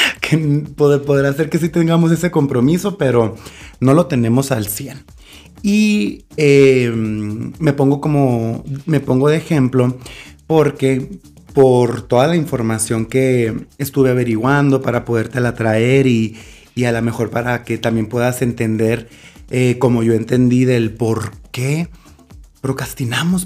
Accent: Mexican